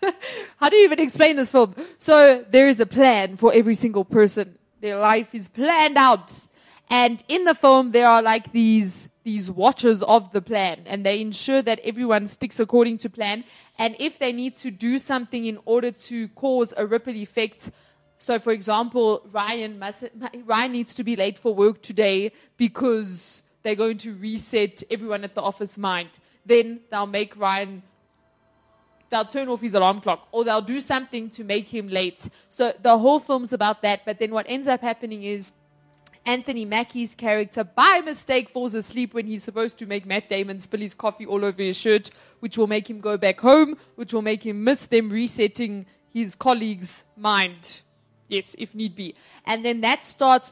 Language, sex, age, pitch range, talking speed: English, female, 20-39, 205-245 Hz, 185 wpm